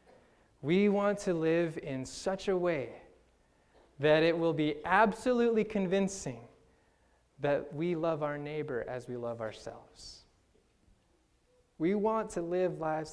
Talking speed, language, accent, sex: 130 wpm, English, American, male